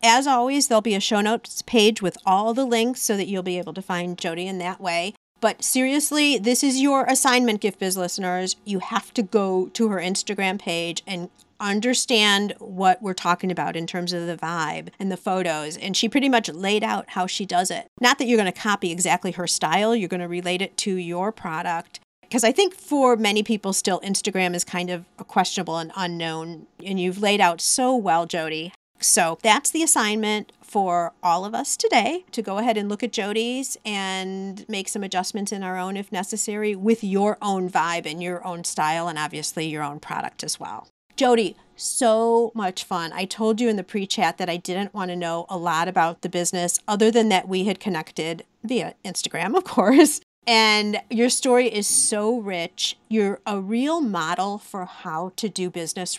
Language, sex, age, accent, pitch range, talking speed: English, female, 40-59, American, 180-225 Hz, 200 wpm